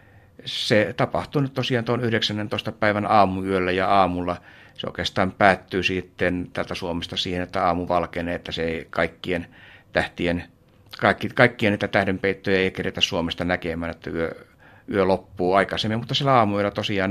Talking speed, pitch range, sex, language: 145 wpm, 95-110 Hz, male, Finnish